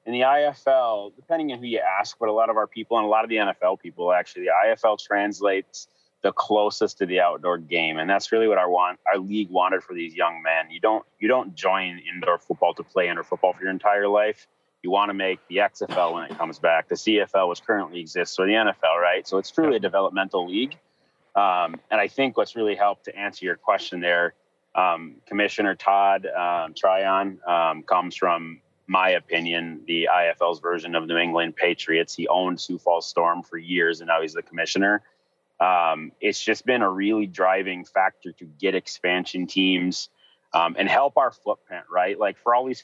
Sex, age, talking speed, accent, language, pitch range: male, 30-49, 205 wpm, American, English, 85-105 Hz